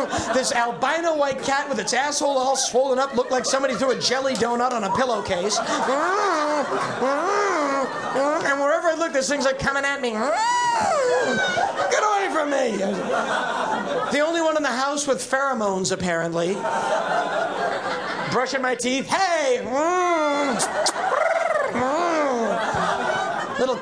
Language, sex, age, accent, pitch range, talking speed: English, male, 50-69, American, 240-300 Hz, 120 wpm